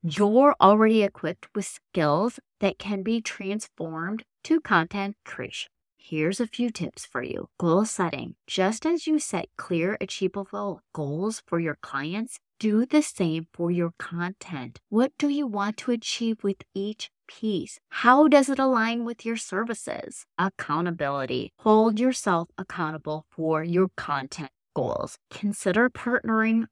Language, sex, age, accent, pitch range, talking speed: English, female, 30-49, American, 165-225 Hz, 140 wpm